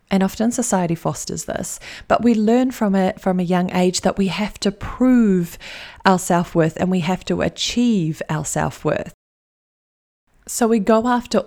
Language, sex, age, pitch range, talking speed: English, female, 30-49, 175-210 Hz, 165 wpm